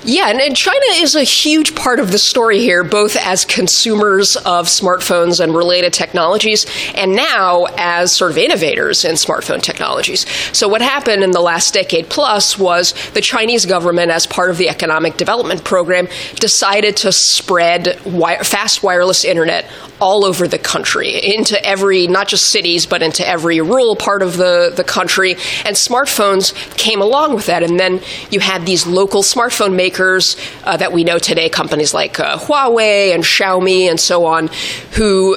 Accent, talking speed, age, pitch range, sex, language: American, 170 wpm, 20-39, 175-210 Hz, female, English